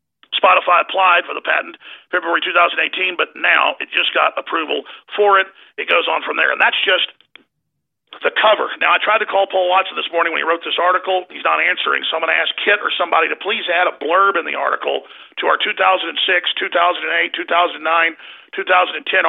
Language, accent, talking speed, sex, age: English, American, 200 wpm, male, 50-69